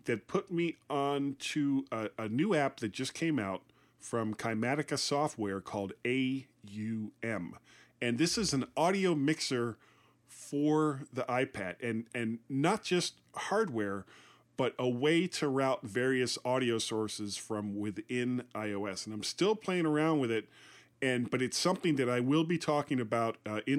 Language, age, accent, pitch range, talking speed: English, 40-59, American, 115-150 Hz, 160 wpm